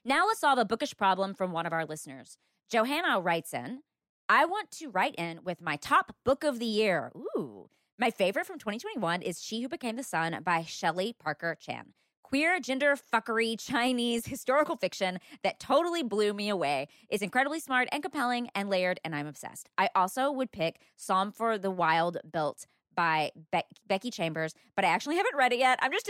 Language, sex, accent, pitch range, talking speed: English, female, American, 175-260 Hz, 190 wpm